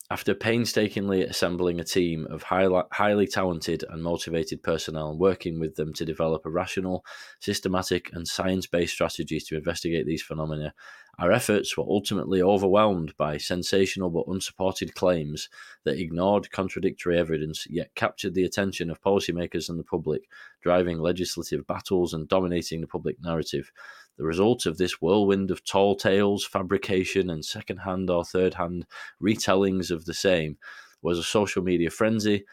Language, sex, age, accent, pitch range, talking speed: English, male, 20-39, British, 80-95 Hz, 150 wpm